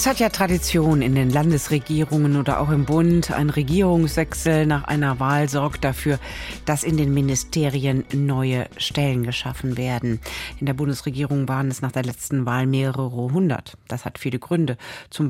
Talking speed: 165 wpm